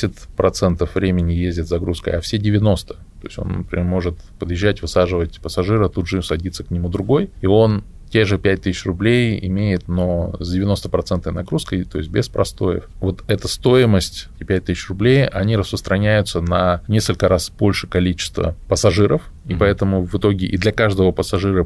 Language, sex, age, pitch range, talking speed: Russian, male, 20-39, 90-105 Hz, 165 wpm